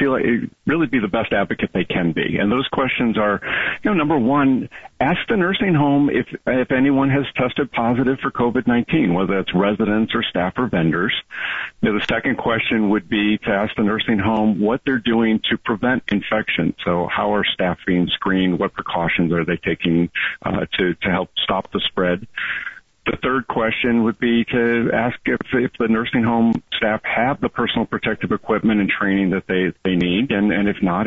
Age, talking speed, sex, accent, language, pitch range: 50-69, 190 wpm, male, American, English, 95-120 Hz